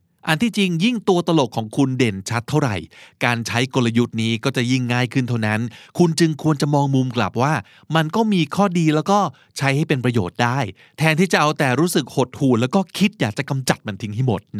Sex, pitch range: male, 115-150 Hz